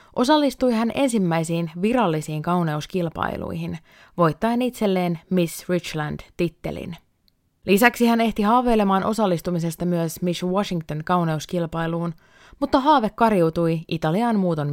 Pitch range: 165-225 Hz